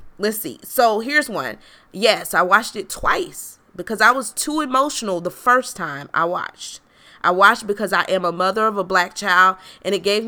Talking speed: 200 wpm